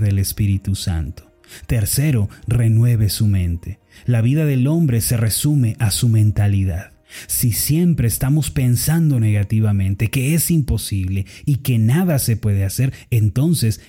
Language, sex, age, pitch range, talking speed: Spanish, male, 30-49, 105-140 Hz, 135 wpm